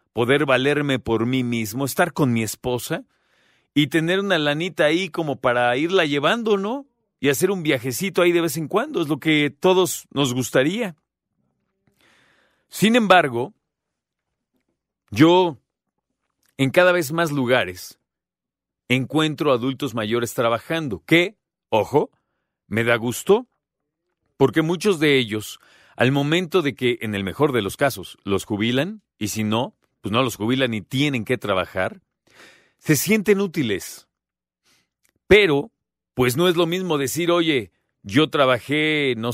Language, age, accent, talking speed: Spanish, 40-59, Mexican, 140 wpm